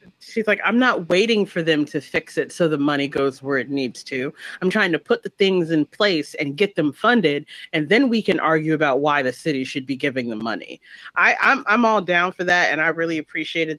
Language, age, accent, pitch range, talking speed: English, 30-49, American, 140-165 Hz, 235 wpm